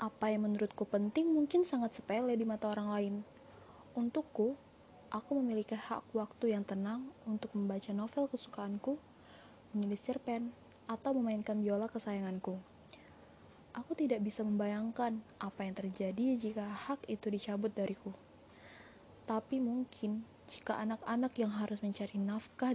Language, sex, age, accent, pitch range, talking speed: Indonesian, female, 20-39, native, 205-240 Hz, 125 wpm